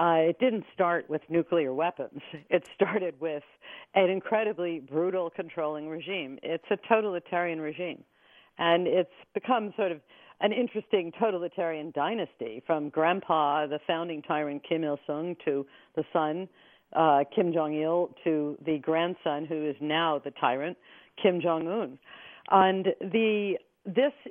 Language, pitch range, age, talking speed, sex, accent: English, 150-185 Hz, 50-69, 135 wpm, female, American